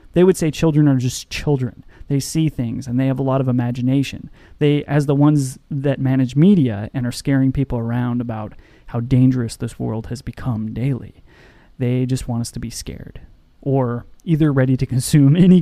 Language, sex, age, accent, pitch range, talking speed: English, male, 30-49, American, 125-155 Hz, 190 wpm